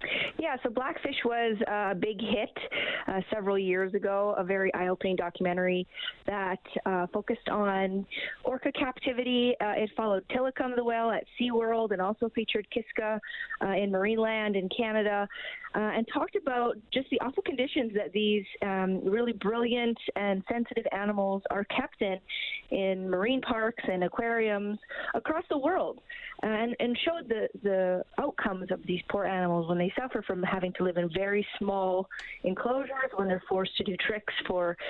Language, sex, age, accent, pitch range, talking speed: English, female, 30-49, American, 195-245 Hz, 160 wpm